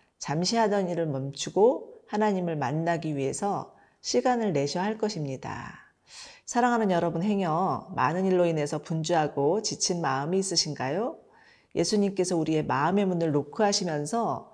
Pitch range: 150-200 Hz